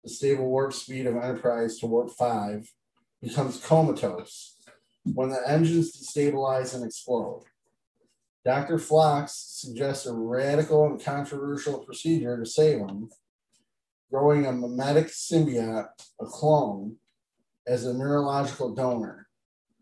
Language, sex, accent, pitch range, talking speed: English, male, American, 115-145 Hz, 115 wpm